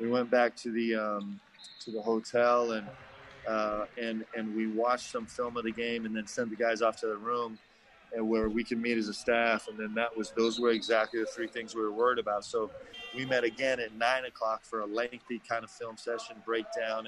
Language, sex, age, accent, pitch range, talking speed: English, male, 30-49, American, 110-120 Hz, 230 wpm